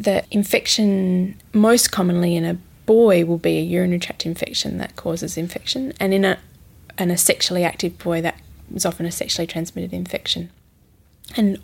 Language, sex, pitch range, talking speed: English, female, 160-190 Hz, 165 wpm